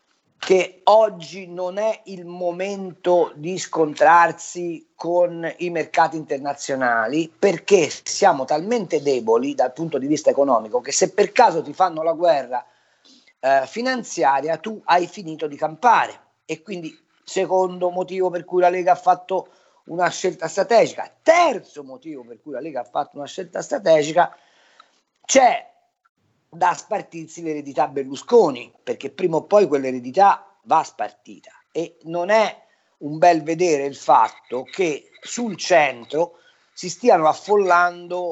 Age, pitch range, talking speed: 40-59, 150-200 Hz, 135 wpm